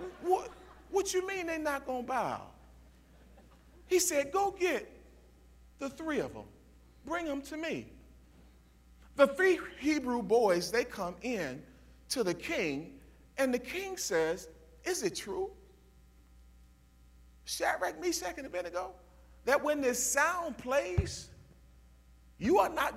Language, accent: English, American